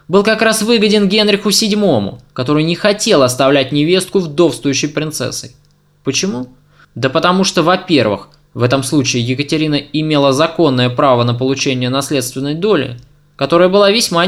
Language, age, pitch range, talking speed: Russian, 20-39, 130-185 Hz, 135 wpm